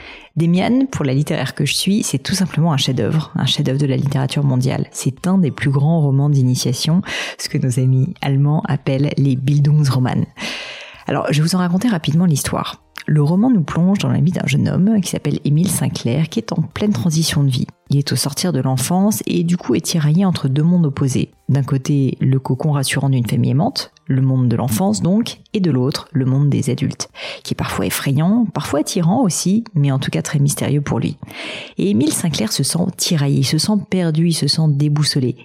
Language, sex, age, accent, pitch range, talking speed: French, female, 40-59, French, 140-170 Hz, 215 wpm